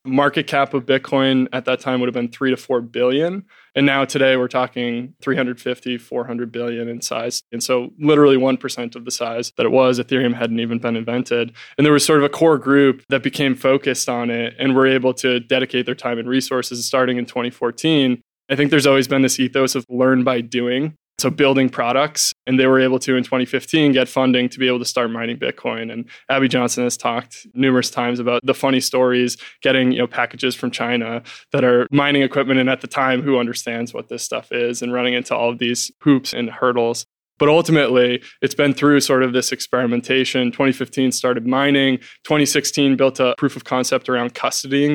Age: 20-39